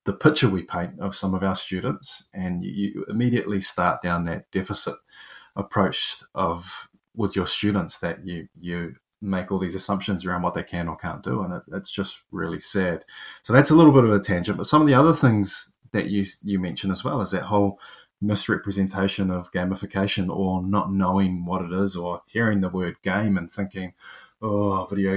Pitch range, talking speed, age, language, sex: 95-105 Hz, 190 wpm, 20-39, English, male